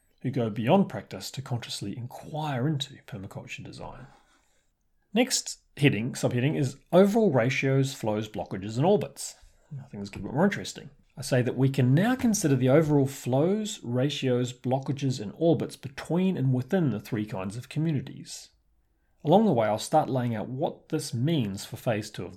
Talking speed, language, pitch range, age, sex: 170 wpm, English, 120-155 Hz, 30-49, male